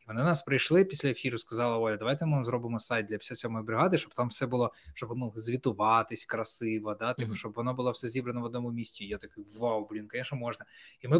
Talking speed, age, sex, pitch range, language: 215 wpm, 20-39, male, 115-140 Hz, Ukrainian